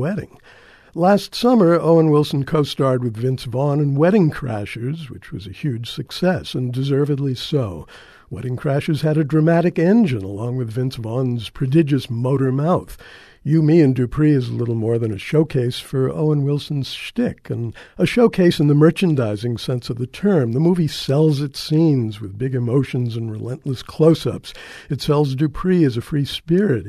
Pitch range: 120-155 Hz